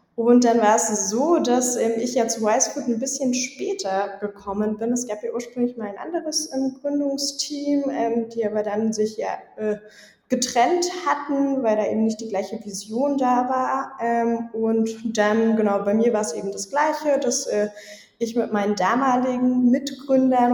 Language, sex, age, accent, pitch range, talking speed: German, female, 20-39, German, 215-265 Hz, 160 wpm